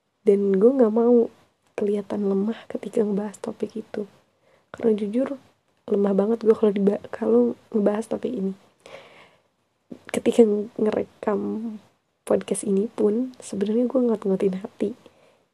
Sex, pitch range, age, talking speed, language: female, 205-240 Hz, 20-39, 110 wpm, Indonesian